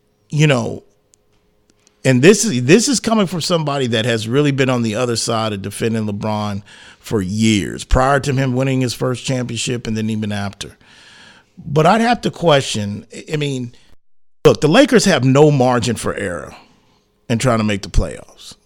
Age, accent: 40-59, American